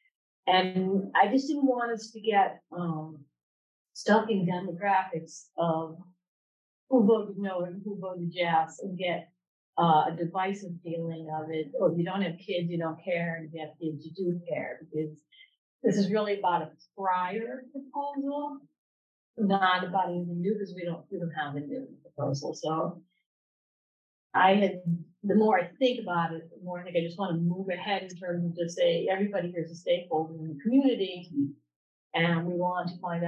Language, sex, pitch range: English, female, 160-195 Hz